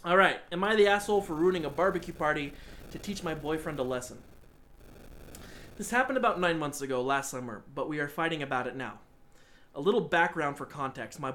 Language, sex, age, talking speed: English, male, 20-39, 195 wpm